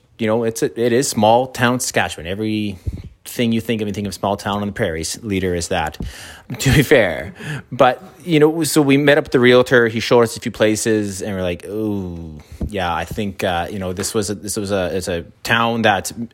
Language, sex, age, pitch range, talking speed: English, male, 30-49, 95-120 Hz, 230 wpm